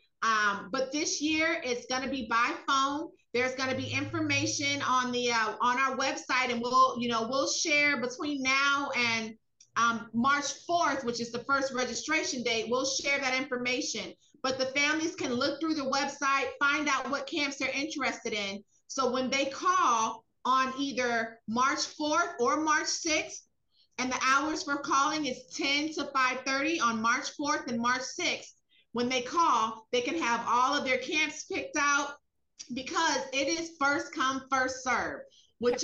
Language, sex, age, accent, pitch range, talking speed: English, female, 30-49, American, 245-295 Hz, 175 wpm